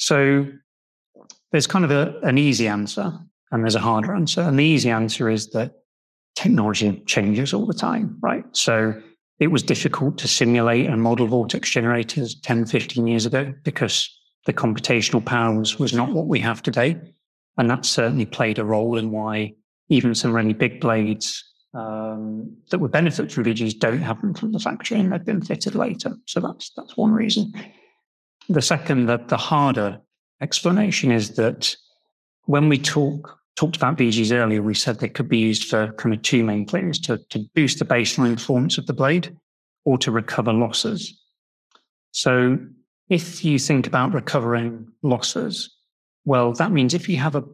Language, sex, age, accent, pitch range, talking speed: English, male, 30-49, British, 115-170 Hz, 175 wpm